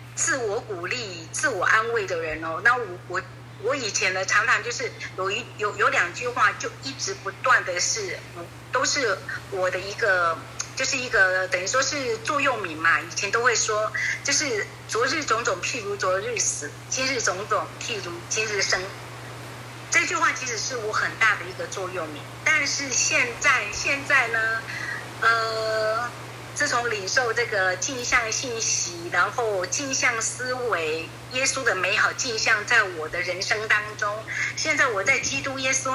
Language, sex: Chinese, female